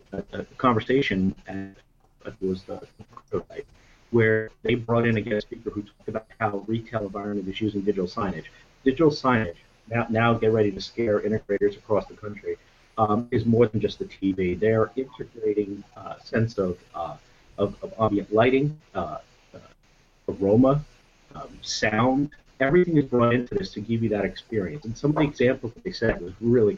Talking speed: 175 wpm